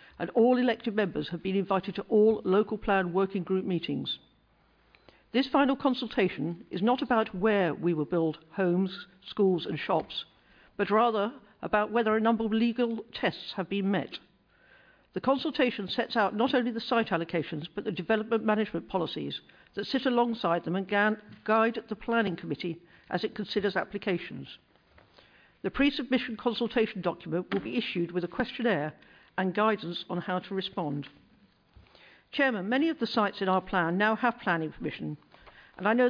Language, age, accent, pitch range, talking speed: English, 50-69, British, 190-235 Hz, 165 wpm